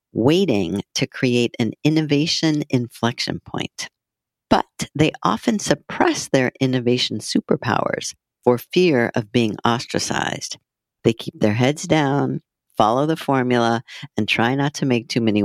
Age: 50-69